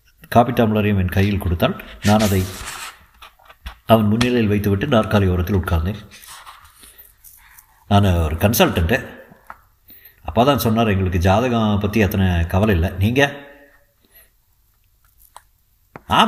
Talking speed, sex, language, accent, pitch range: 95 wpm, male, Tamil, native, 100-145 Hz